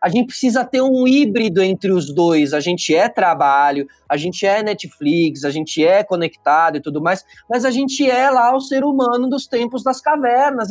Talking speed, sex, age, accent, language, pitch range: 200 wpm, male, 20-39, Brazilian, Portuguese, 180-265 Hz